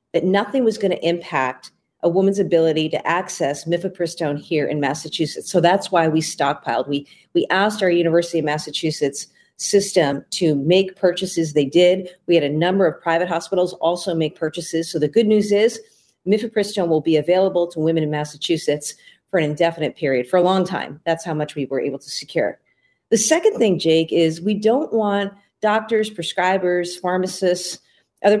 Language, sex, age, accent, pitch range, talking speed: English, female, 40-59, American, 160-195 Hz, 175 wpm